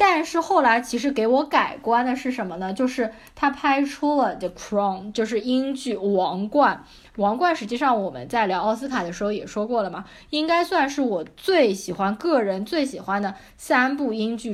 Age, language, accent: 20-39, Chinese, native